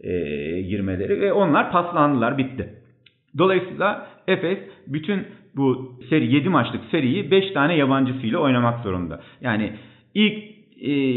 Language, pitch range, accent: Turkish, 120-155 Hz, native